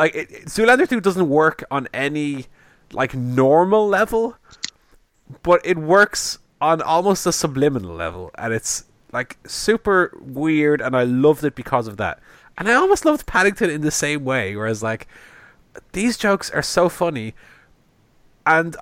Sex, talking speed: male, 150 wpm